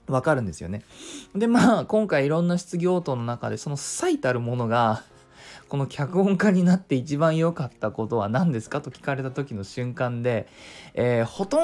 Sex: male